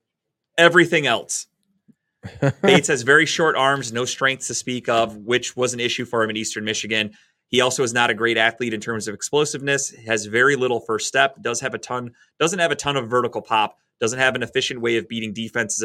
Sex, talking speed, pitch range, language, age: male, 210 wpm, 110-130 Hz, English, 30-49